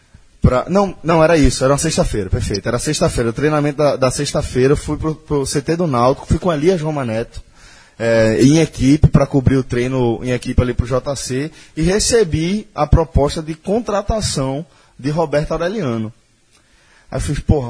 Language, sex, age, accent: Portuguese, male, 20-39, Brazilian